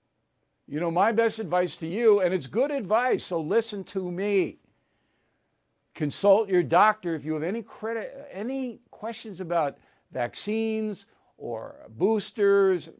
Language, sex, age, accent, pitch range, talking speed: English, male, 60-79, American, 165-220 Hz, 135 wpm